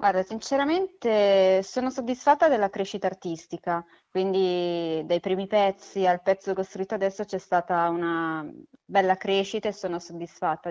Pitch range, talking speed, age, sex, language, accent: 180-210 Hz, 130 wpm, 20-39, female, Italian, native